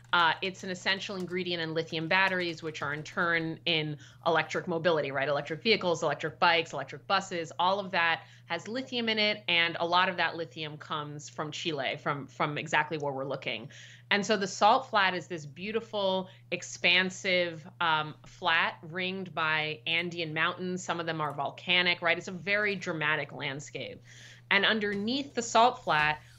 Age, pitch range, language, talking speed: 30-49, 155-190 Hz, English, 170 wpm